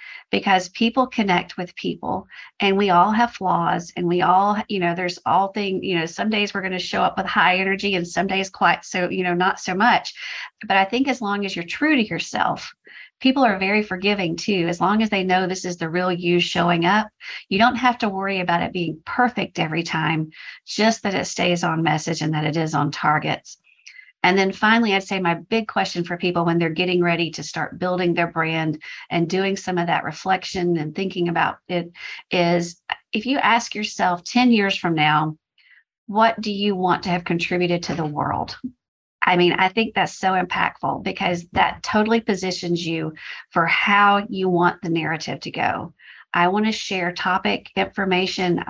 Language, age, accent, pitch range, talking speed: English, 40-59, American, 170-200 Hz, 200 wpm